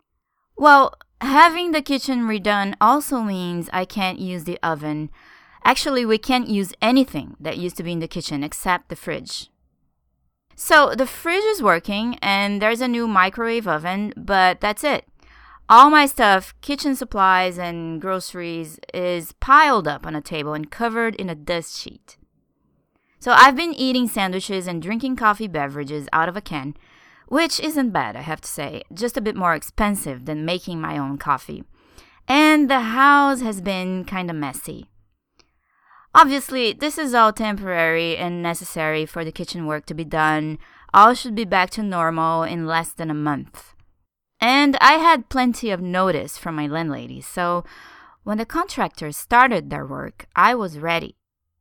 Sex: female